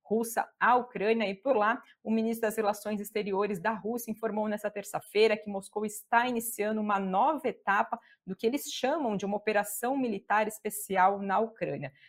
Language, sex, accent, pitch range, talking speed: Portuguese, female, Brazilian, 195-230 Hz, 165 wpm